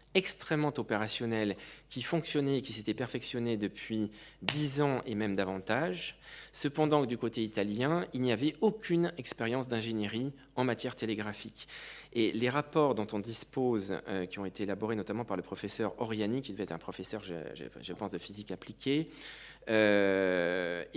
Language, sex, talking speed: French, male, 160 wpm